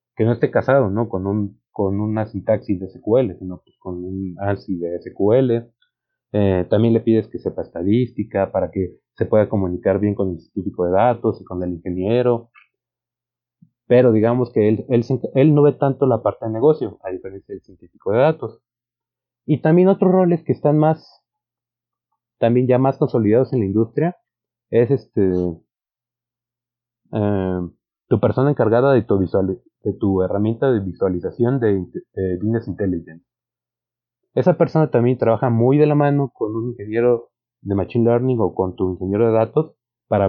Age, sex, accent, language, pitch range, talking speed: 30-49, male, Mexican, Spanish, 100-125 Hz, 170 wpm